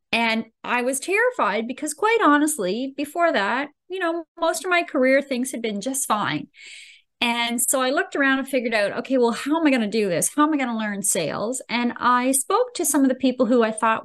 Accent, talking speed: American, 235 wpm